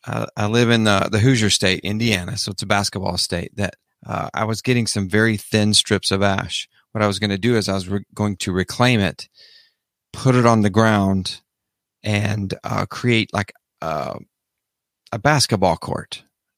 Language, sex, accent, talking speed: English, male, American, 180 wpm